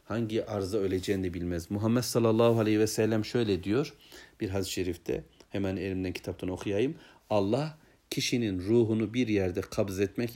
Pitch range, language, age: 100-120 Hz, Turkish, 60-79